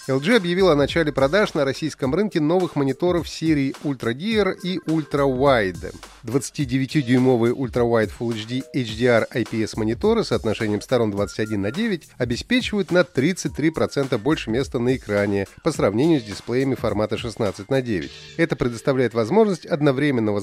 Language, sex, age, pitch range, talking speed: Russian, male, 30-49, 115-175 Hz, 140 wpm